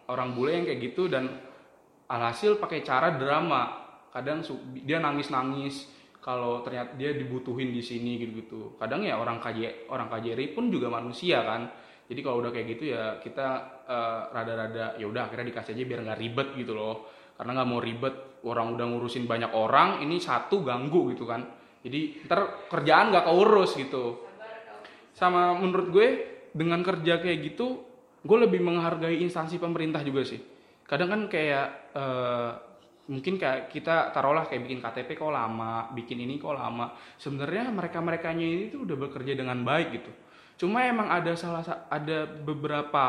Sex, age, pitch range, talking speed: male, 20-39, 120-180 Hz, 165 wpm